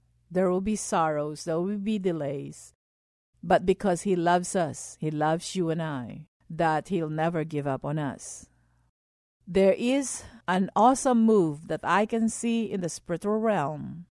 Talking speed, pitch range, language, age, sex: 160 wpm, 145-195 Hz, English, 50-69, female